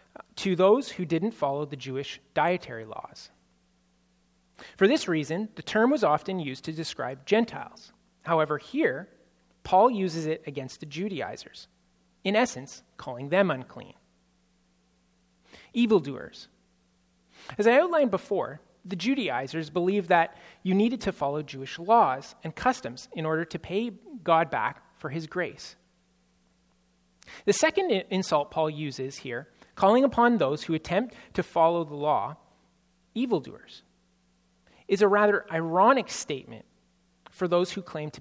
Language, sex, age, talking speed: English, male, 30-49, 135 wpm